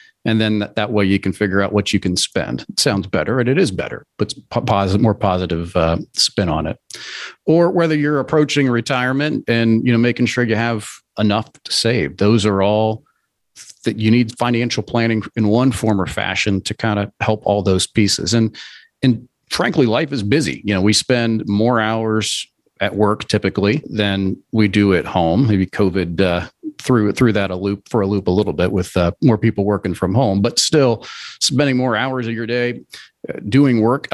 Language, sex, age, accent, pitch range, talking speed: English, male, 40-59, American, 100-120 Hz, 200 wpm